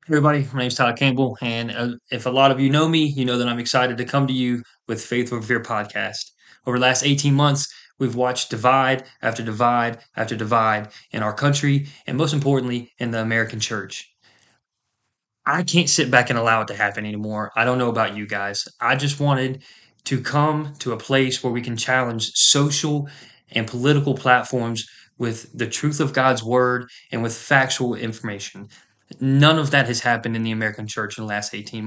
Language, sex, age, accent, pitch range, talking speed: English, male, 20-39, American, 115-140 Hz, 200 wpm